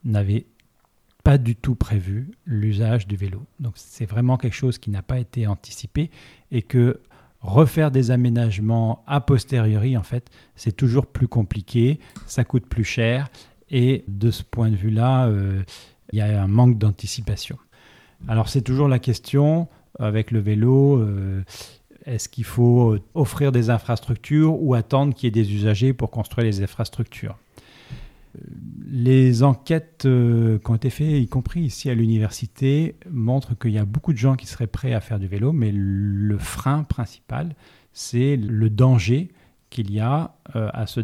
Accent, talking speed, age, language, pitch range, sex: French, 160 wpm, 40-59, French, 105-130 Hz, male